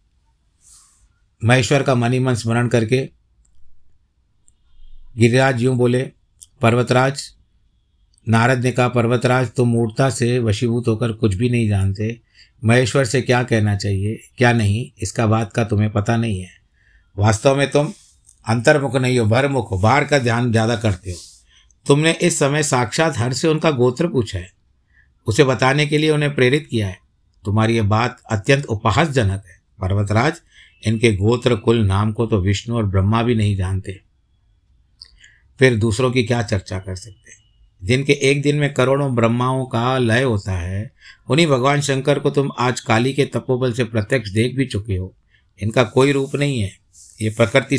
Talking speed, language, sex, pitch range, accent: 160 wpm, Hindi, male, 100-130 Hz, native